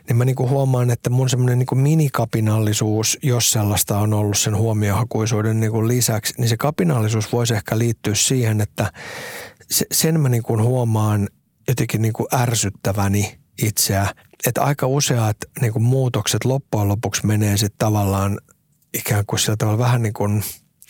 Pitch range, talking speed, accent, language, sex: 105-125 Hz, 140 wpm, native, Finnish, male